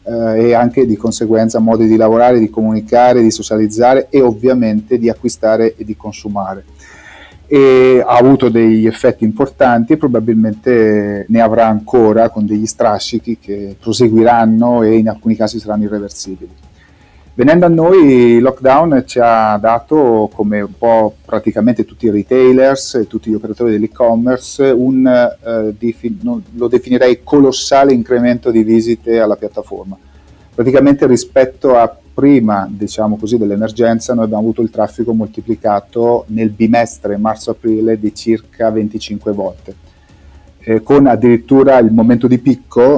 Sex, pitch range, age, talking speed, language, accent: male, 105-120 Hz, 30-49, 135 wpm, Italian, native